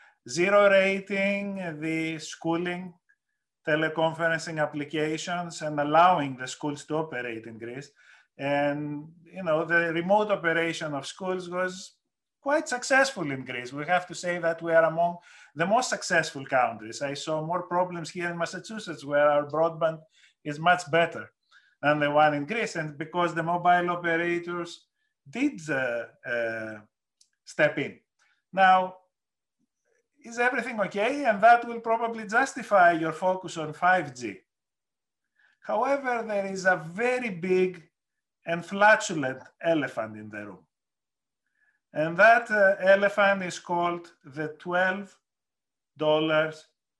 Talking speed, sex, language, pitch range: 130 wpm, male, English, 150-190 Hz